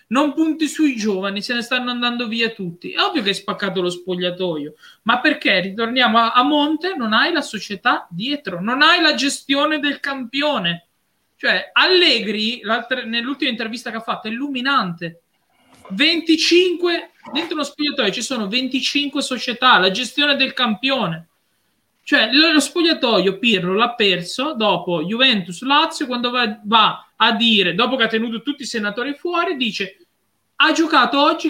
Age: 20-39